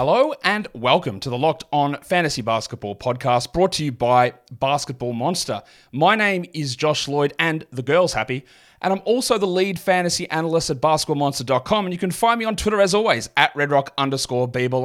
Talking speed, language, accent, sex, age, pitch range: 190 wpm, English, Australian, male, 30-49, 125-180 Hz